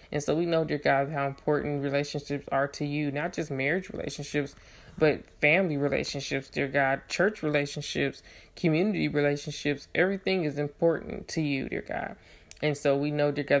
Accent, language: American, English